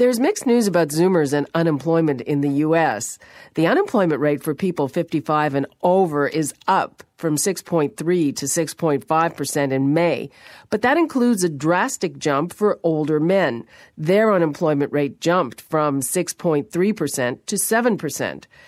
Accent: American